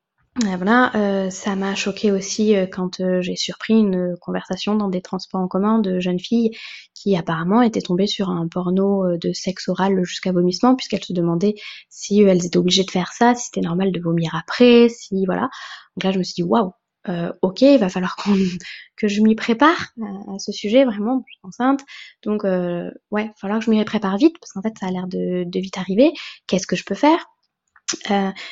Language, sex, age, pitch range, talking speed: French, female, 20-39, 180-220 Hz, 215 wpm